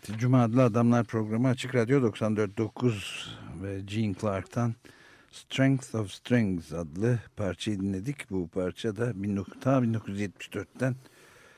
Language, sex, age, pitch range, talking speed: Turkish, male, 60-79, 90-120 Hz, 100 wpm